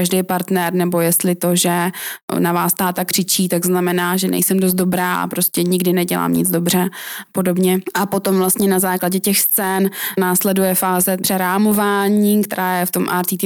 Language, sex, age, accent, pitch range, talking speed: Czech, female, 20-39, native, 180-195 Hz, 170 wpm